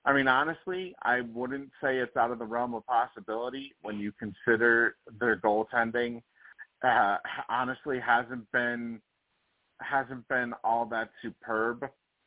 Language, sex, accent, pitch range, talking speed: English, male, American, 105-130 Hz, 130 wpm